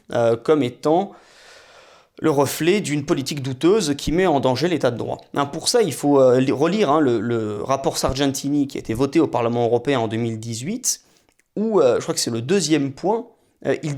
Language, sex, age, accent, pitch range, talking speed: French, male, 30-49, French, 135-180 Hz, 200 wpm